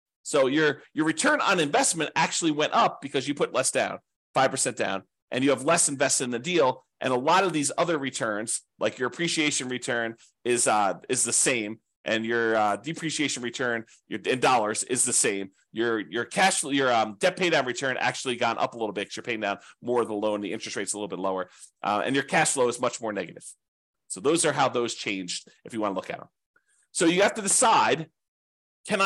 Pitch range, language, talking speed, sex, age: 120-170 Hz, English, 225 wpm, male, 30-49